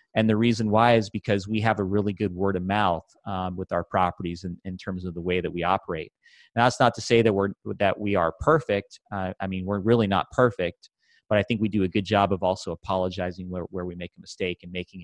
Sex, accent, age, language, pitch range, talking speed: male, American, 30-49, English, 90-110 Hz, 250 wpm